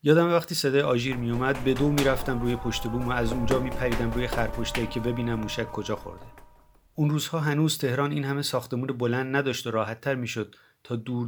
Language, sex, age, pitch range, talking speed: Persian, male, 30-49, 110-130 Hz, 200 wpm